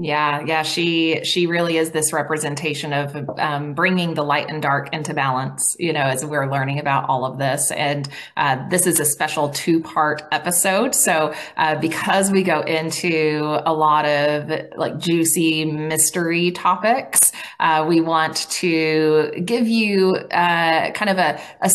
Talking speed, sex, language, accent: 165 wpm, female, English, American